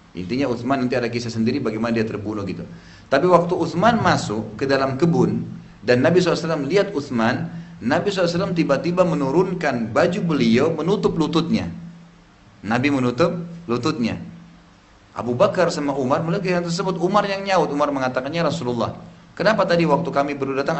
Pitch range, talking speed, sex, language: 120-175 Hz, 145 wpm, male, Indonesian